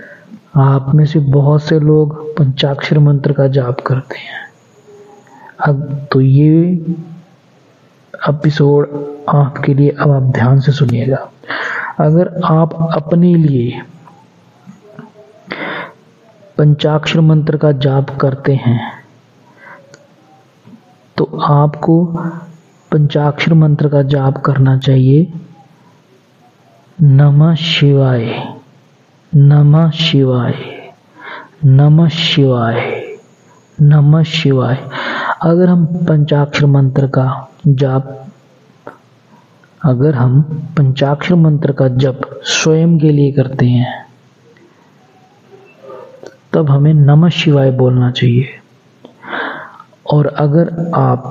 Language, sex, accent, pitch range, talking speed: Hindi, male, native, 135-160 Hz, 90 wpm